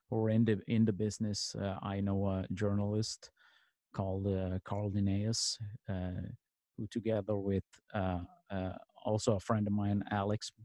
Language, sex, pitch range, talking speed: English, male, 100-115 Hz, 150 wpm